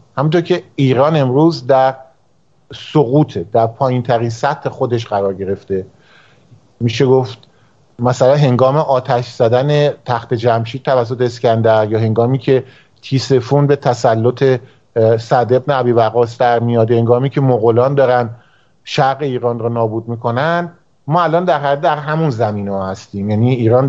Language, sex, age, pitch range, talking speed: Persian, male, 50-69, 115-145 Hz, 135 wpm